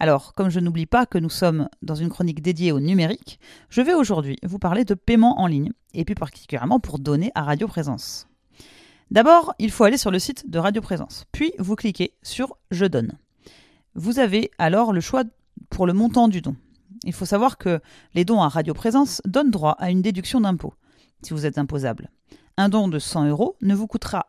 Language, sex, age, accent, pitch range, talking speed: French, female, 40-59, French, 165-230 Hz, 205 wpm